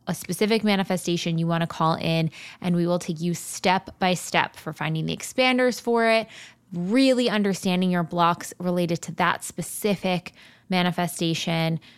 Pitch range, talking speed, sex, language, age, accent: 165-195 Hz, 155 wpm, female, English, 20-39, American